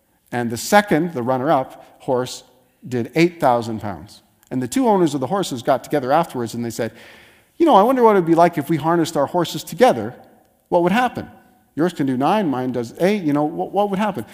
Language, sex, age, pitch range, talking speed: English, male, 40-59, 115-170 Hz, 220 wpm